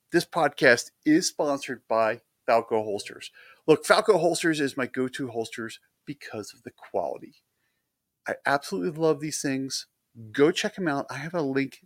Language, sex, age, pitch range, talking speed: English, male, 40-59, 120-170 Hz, 155 wpm